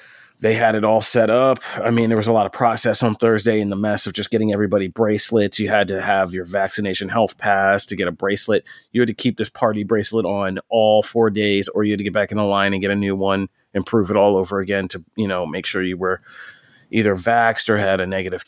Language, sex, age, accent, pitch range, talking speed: English, male, 30-49, American, 100-115 Hz, 260 wpm